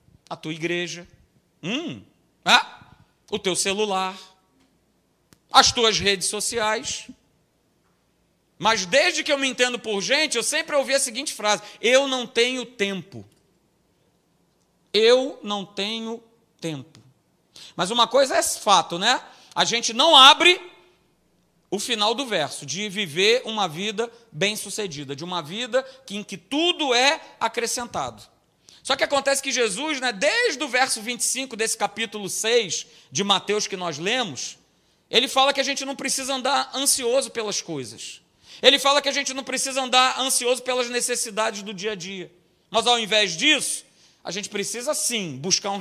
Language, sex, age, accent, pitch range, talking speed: Portuguese, male, 40-59, Brazilian, 195-265 Hz, 150 wpm